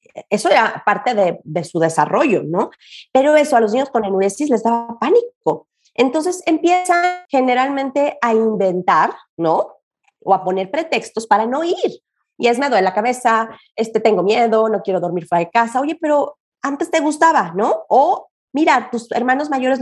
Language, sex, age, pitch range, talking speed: Spanish, female, 30-49, 195-265 Hz, 175 wpm